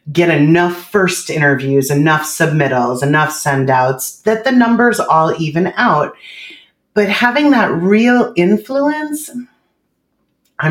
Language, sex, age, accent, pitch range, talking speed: English, female, 30-49, American, 145-215 Hz, 120 wpm